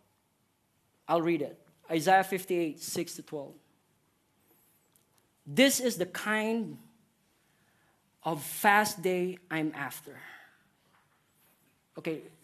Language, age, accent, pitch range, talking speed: English, 20-39, Filipino, 160-215 Hz, 85 wpm